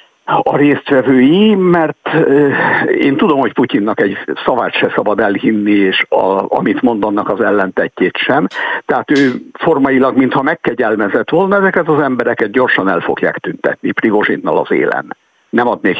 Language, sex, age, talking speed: Hungarian, male, 60-79, 145 wpm